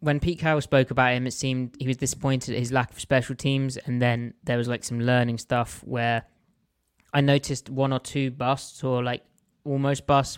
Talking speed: 210 wpm